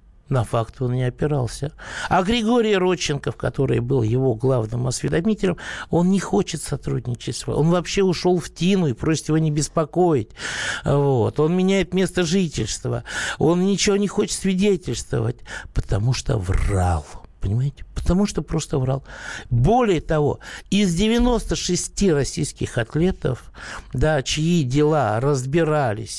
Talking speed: 125 wpm